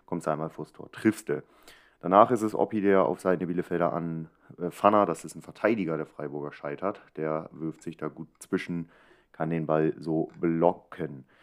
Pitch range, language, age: 80-95 Hz, German, 30-49